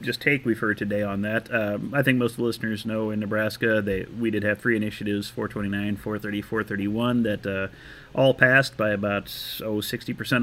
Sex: male